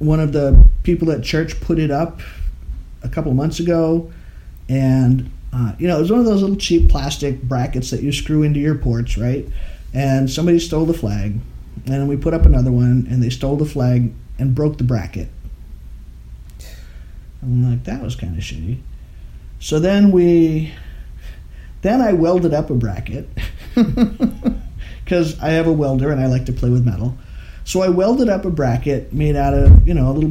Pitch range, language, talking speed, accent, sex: 120-160 Hz, English, 190 wpm, American, male